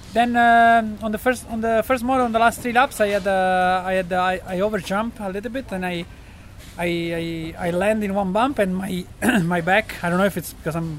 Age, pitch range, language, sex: 20-39, 165-205 Hz, English, male